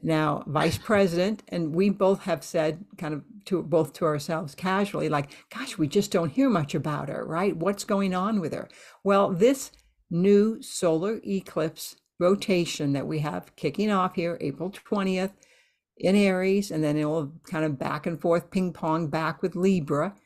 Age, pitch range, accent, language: 60-79, 160-200 Hz, American, English